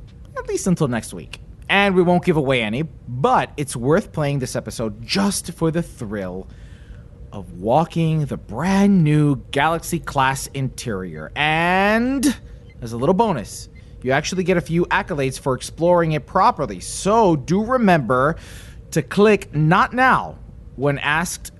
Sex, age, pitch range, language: male, 30-49, 125-180 Hz, English